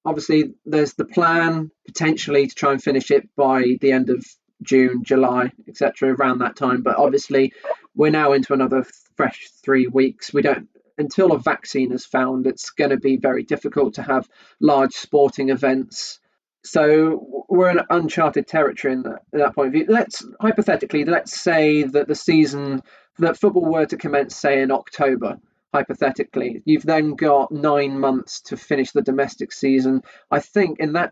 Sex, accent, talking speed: male, British, 170 wpm